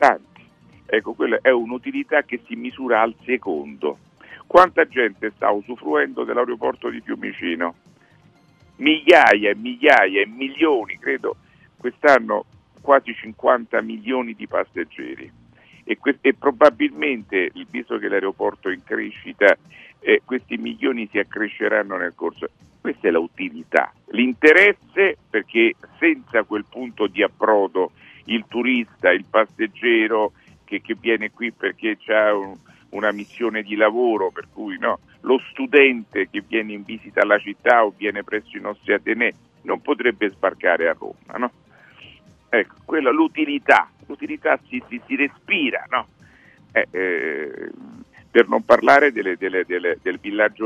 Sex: male